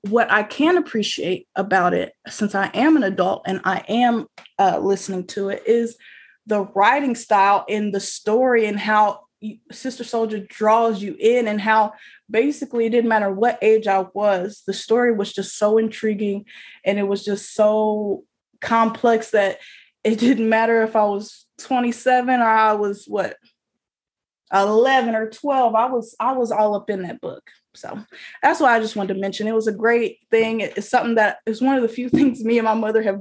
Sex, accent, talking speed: female, American, 190 wpm